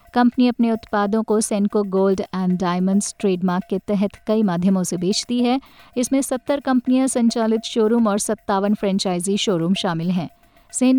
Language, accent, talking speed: English, Indian, 155 wpm